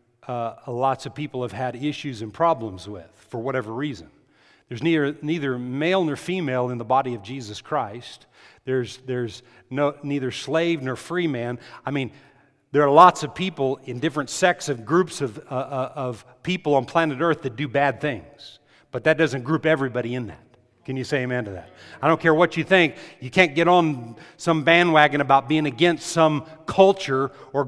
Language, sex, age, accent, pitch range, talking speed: English, male, 40-59, American, 130-170 Hz, 190 wpm